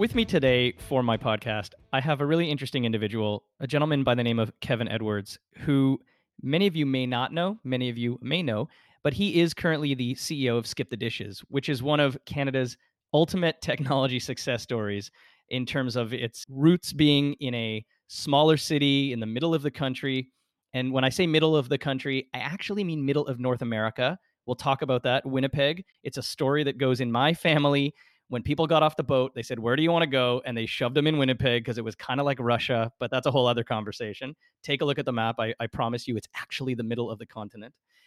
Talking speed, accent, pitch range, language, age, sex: 230 wpm, American, 120-150 Hz, English, 30-49, male